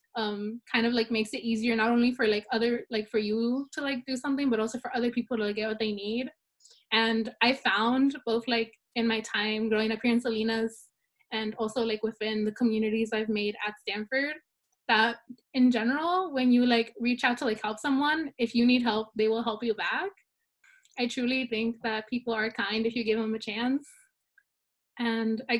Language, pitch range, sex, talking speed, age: English, 220-255 Hz, female, 205 wpm, 20-39